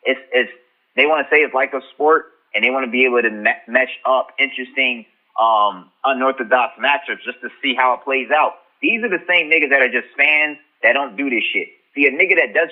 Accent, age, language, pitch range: American, 30-49, English, 130-170 Hz